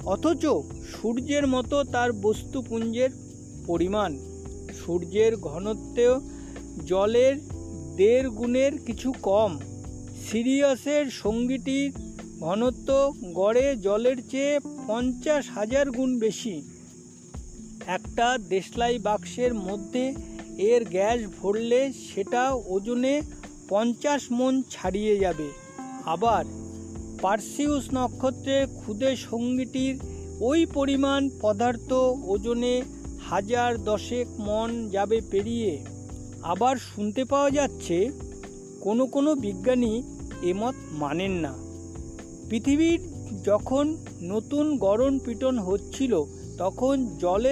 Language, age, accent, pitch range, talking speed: Bengali, 50-69, native, 200-265 Hz, 75 wpm